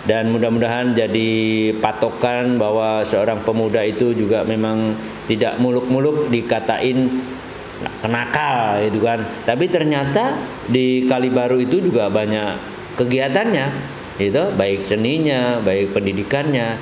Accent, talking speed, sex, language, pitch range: native, 110 wpm, male, Indonesian, 115-140 Hz